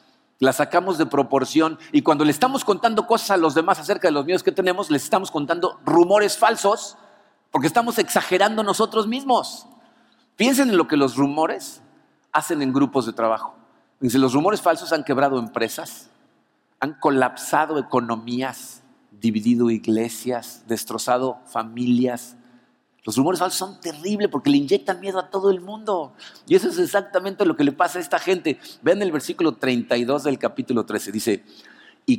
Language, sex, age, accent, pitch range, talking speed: Spanish, male, 50-69, Mexican, 130-210 Hz, 160 wpm